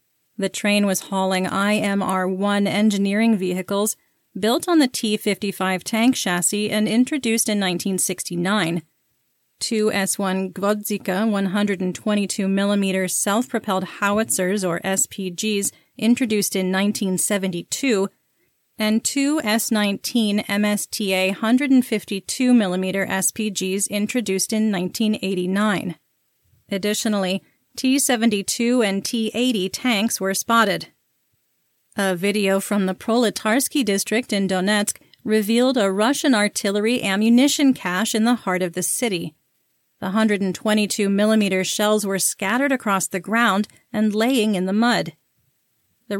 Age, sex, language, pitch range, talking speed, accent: 30-49, female, English, 190-225 Hz, 100 wpm, American